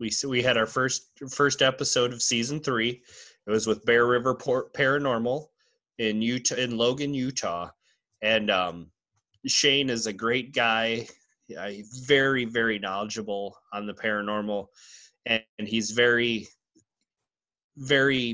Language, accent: English, American